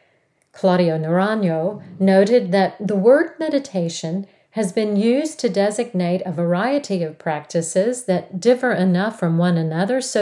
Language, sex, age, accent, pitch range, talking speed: English, female, 50-69, American, 175-230 Hz, 135 wpm